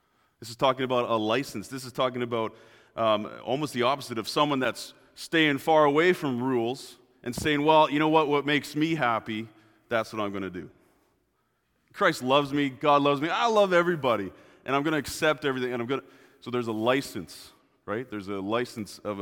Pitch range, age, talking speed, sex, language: 110-140 Hz, 30-49, 205 wpm, male, English